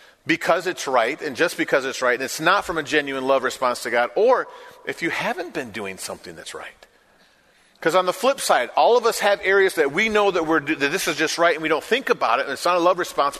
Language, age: English, 40-59